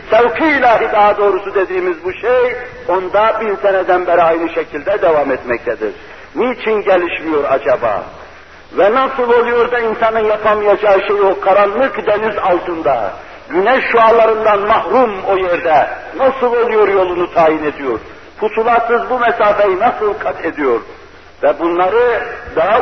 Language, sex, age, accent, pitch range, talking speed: Turkish, male, 60-79, native, 175-230 Hz, 125 wpm